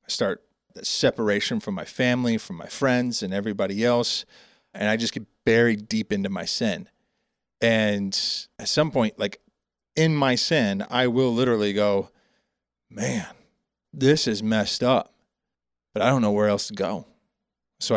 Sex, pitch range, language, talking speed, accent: male, 100-115 Hz, English, 160 wpm, American